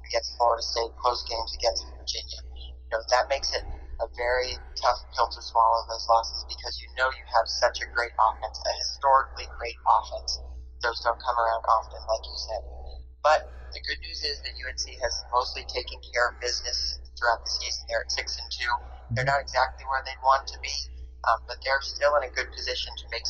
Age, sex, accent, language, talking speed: 30-49, male, American, English, 205 wpm